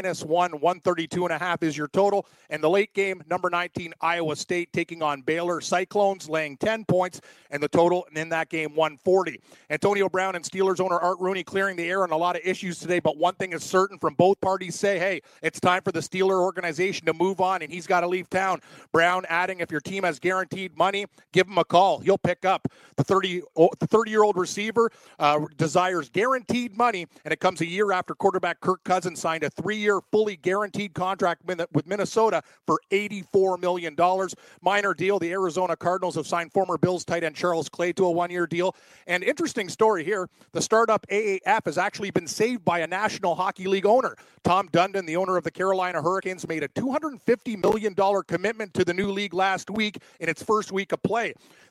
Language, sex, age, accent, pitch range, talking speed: English, male, 40-59, American, 170-195 Hz, 200 wpm